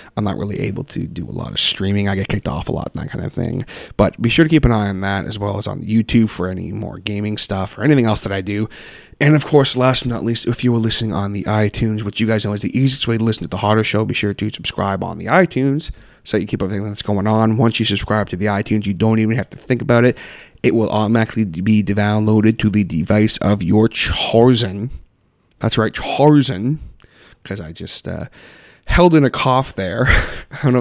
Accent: American